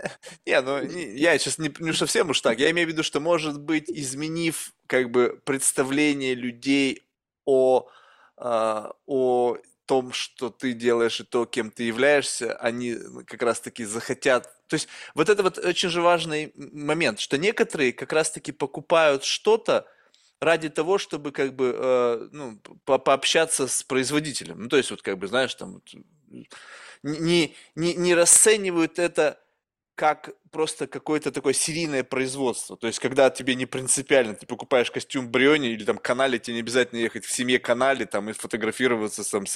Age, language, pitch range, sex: 20-39, Russian, 125-165 Hz, male